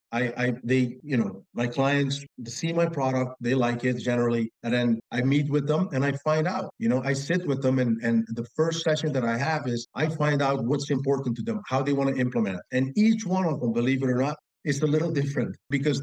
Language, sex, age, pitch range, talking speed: English, male, 50-69, 120-155 Hz, 245 wpm